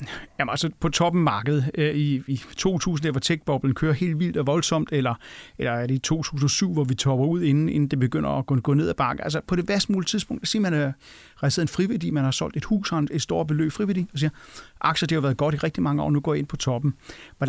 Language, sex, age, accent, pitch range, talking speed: Danish, male, 30-49, native, 135-160 Hz, 260 wpm